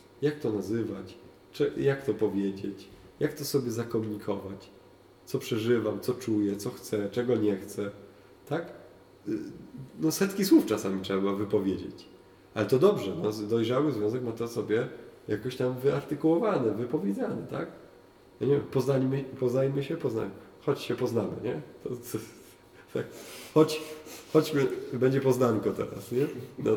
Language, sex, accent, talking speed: Polish, male, native, 135 wpm